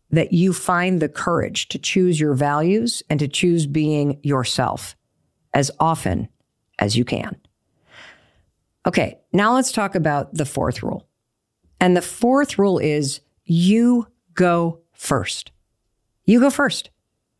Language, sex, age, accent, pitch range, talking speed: English, female, 50-69, American, 145-200 Hz, 130 wpm